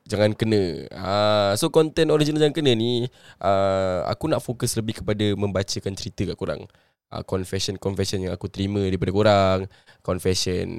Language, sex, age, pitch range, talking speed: Malay, male, 10-29, 100-125 Hz, 150 wpm